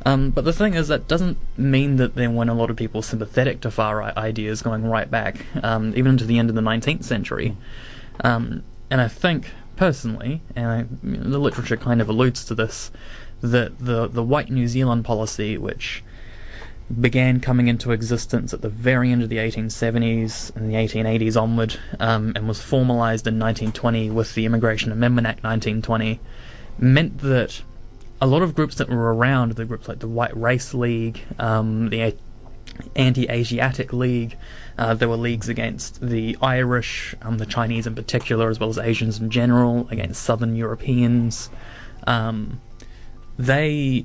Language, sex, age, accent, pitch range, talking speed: English, male, 20-39, Australian, 115-125 Hz, 165 wpm